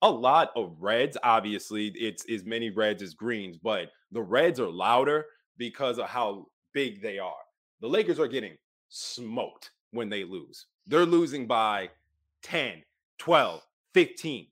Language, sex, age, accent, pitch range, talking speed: English, male, 30-49, American, 120-180 Hz, 150 wpm